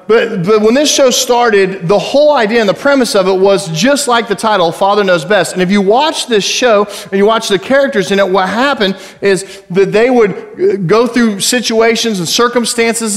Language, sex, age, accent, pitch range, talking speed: English, male, 40-59, American, 195-240 Hz, 210 wpm